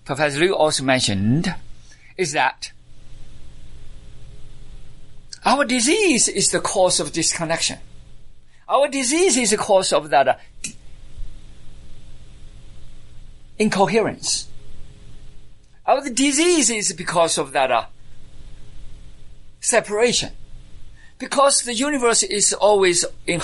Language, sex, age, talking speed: English, male, 50-69, 90 wpm